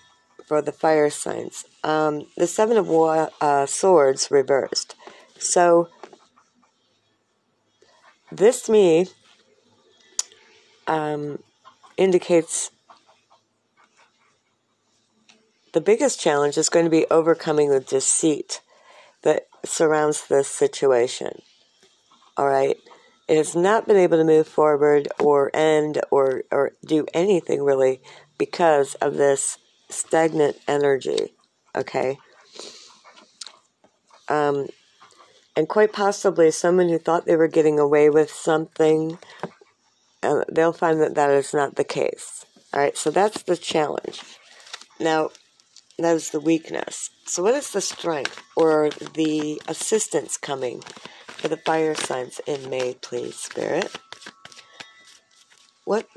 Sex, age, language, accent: female, 50-69, English, American